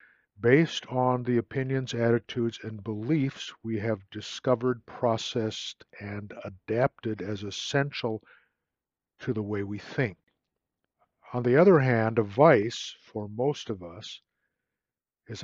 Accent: American